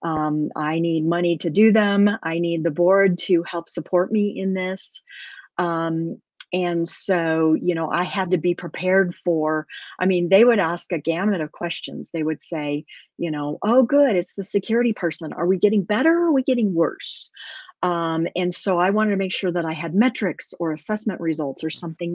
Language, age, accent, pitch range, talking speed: English, 40-59, American, 165-205 Hz, 200 wpm